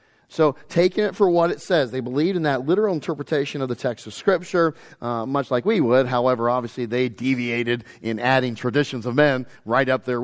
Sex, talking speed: male, 205 wpm